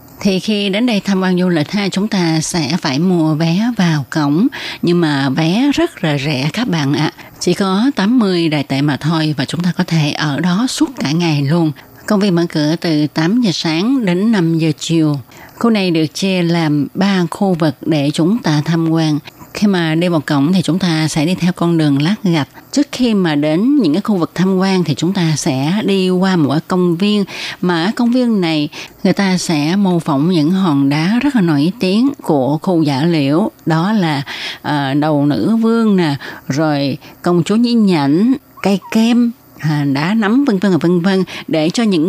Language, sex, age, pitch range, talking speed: Vietnamese, female, 20-39, 155-195 Hz, 215 wpm